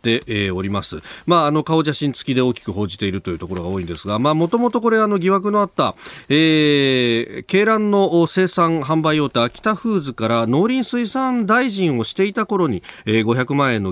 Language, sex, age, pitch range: Japanese, male, 40-59, 110-170 Hz